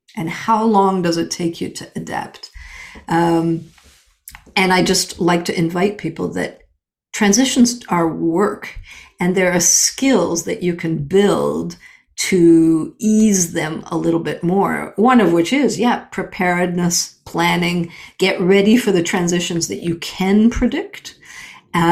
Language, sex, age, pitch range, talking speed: English, female, 50-69, 170-220 Hz, 145 wpm